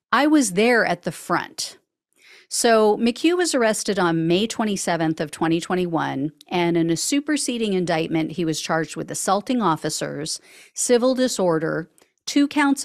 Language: English